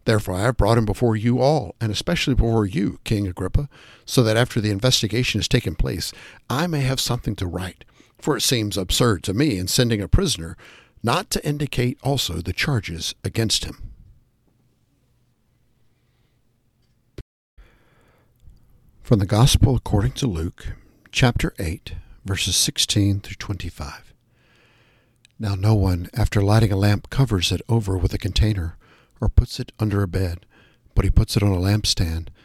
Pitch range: 95-120 Hz